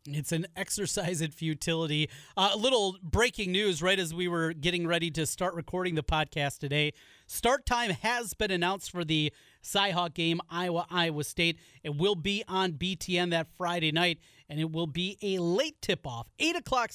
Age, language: 30-49, English